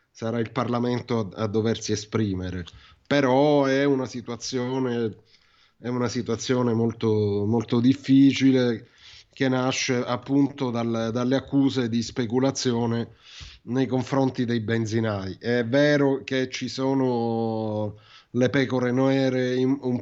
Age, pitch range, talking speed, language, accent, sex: 30-49, 110-130 Hz, 105 wpm, Italian, native, male